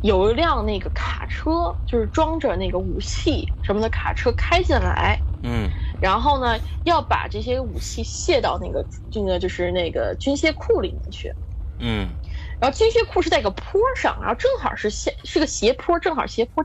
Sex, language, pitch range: female, Chinese, 195-320 Hz